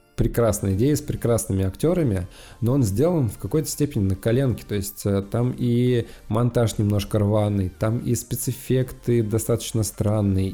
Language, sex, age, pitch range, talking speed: Russian, male, 20-39, 100-125 Hz, 140 wpm